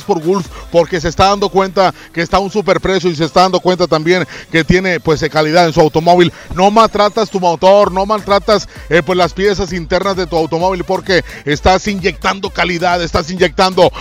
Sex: male